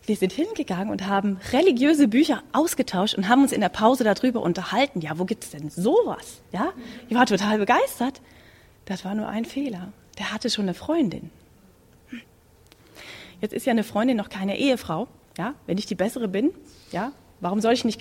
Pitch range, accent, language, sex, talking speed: 185-250 Hz, German, German, female, 185 wpm